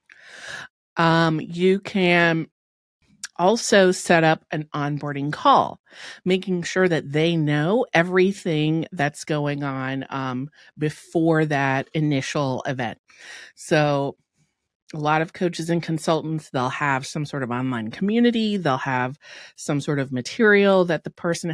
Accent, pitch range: American, 145-180 Hz